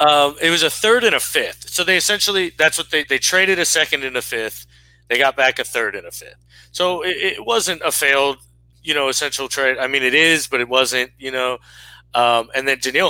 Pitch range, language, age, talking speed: 105-140 Hz, English, 30-49, 235 wpm